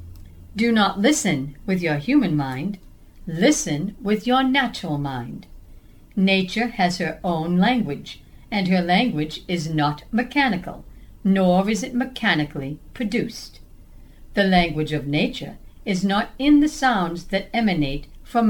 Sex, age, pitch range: female, 60-79, 160-235 Hz